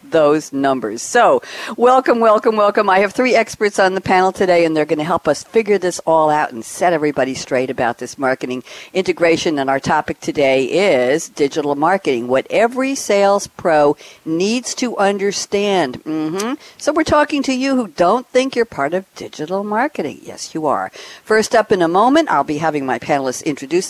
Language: English